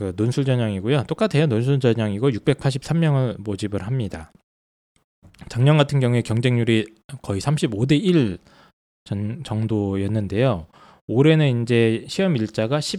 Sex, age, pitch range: male, 20-39, 105-145 Hz